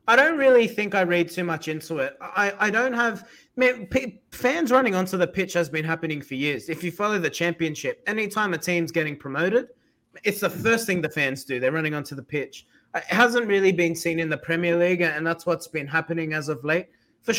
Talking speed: 220 wpm